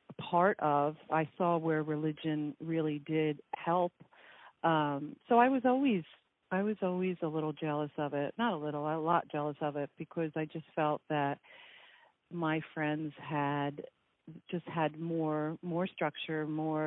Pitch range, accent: 150-175 Hz, American